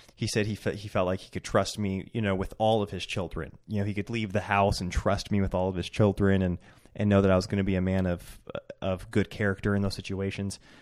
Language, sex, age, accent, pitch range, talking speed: English, male, 20-39, American, 95-110 Hz, 285 wpm